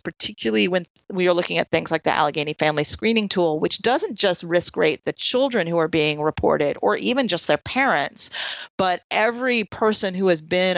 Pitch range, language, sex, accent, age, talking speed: 155-190 Hz, English, female, American, 30-49, 195 wpm